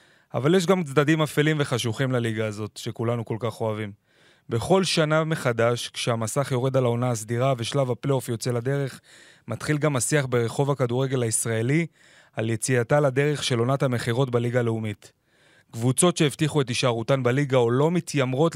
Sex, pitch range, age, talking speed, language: male, 120-150 Hz, 20-39, 150 wpm, Hebrew